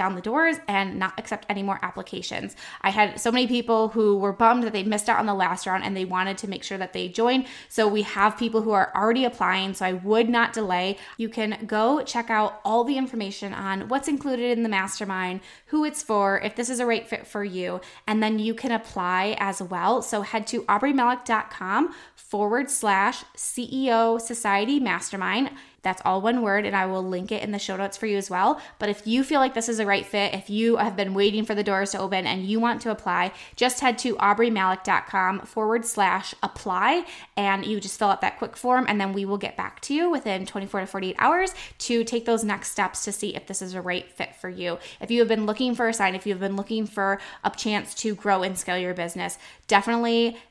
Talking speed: 230 wpm